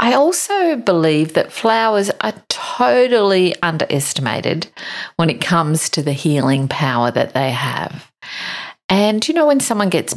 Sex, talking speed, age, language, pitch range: female, 140 wpm, 50-69, English, 155-220 Hz